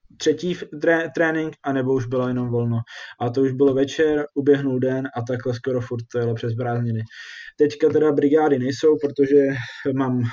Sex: male